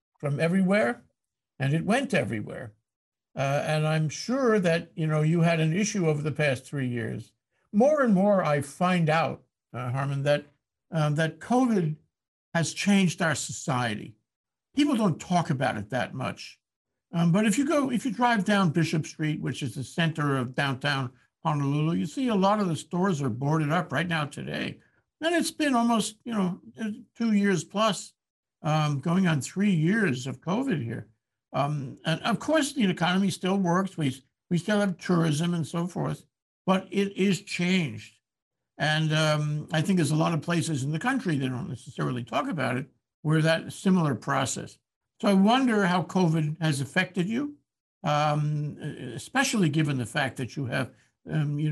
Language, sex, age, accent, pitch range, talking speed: English, male, 60-79, American, 140-190 Hz, 180 wpm